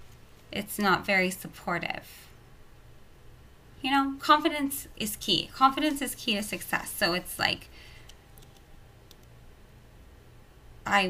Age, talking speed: 20-39, 95 wpm